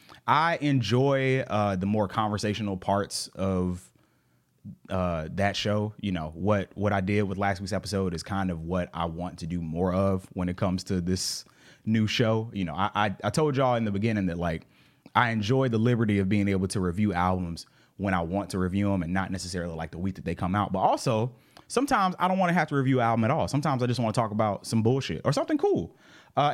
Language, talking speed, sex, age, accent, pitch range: English, 230 wpm, male, 30-49, American, 95-130 Hz